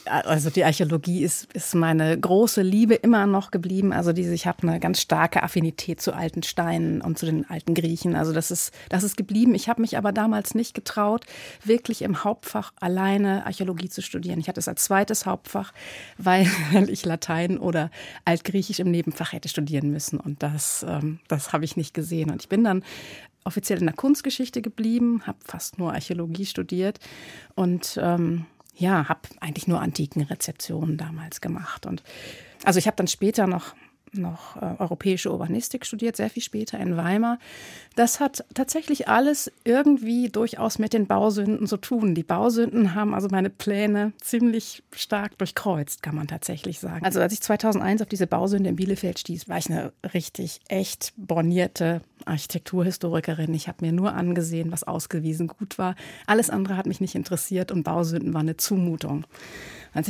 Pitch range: 165-215 Hz